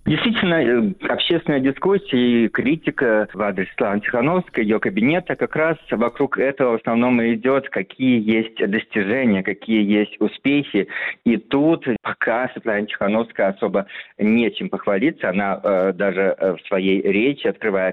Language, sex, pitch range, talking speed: Russian, male, 100-120 Hz, 130 wpm